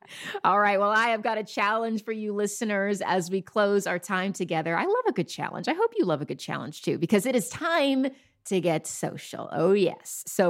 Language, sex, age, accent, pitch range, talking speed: English, female, 30-49, American, 185-240 Hz, 230 wpm